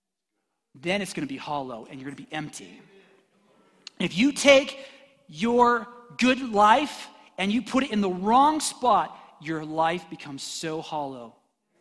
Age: 40-59